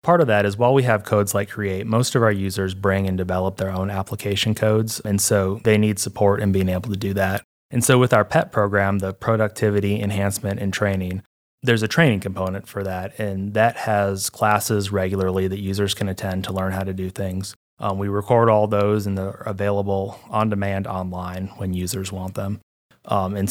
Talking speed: 205 wpm